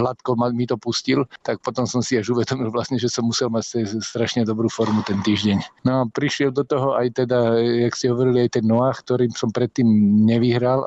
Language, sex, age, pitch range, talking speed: Slovak, male, 50-69, 115-130 Hz, 205 wpm